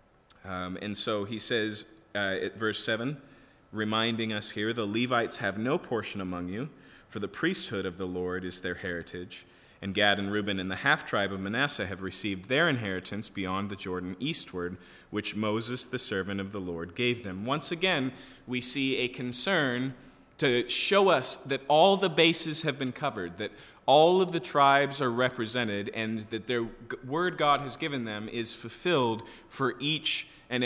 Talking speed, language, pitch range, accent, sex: 180 wpm, English, 100-140 Hz, American, male